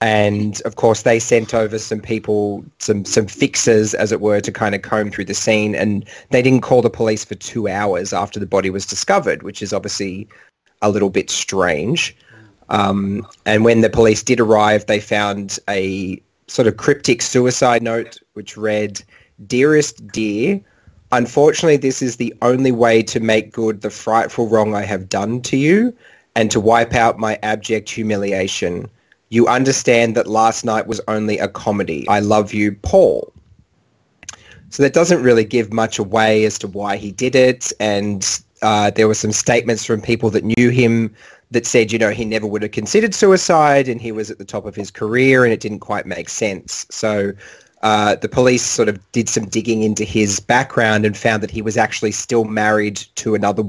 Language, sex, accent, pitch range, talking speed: English, male, Australian, 105-115 Hz, 190 wpm